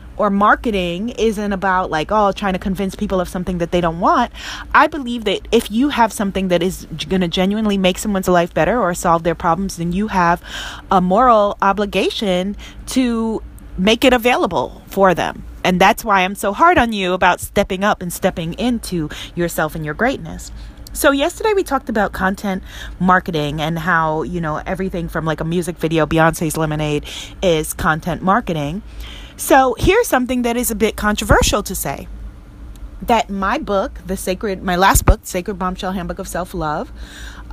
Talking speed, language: 180 wpm, English